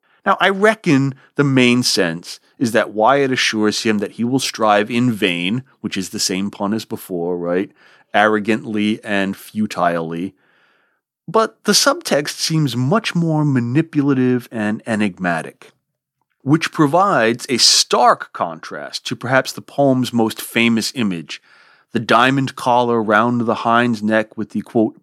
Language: English